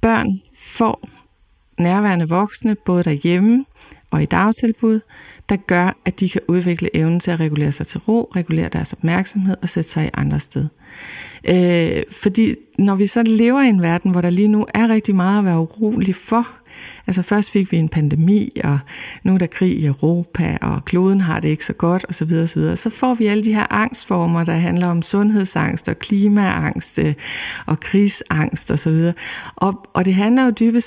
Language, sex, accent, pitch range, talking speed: Danish, female, native, 170-215 Hz, 190 wpm